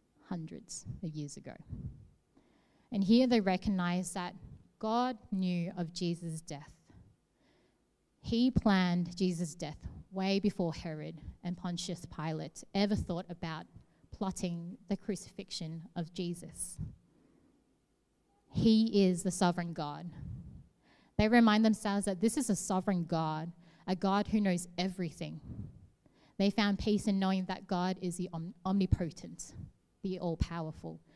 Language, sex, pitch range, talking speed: English, female, 170-205 Hz, 125 wpm